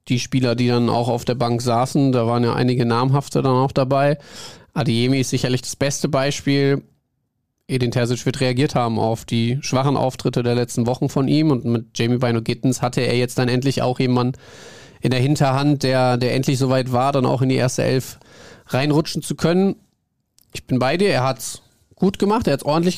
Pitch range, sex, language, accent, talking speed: 125-150 Hz, male, German, German, 205 wpm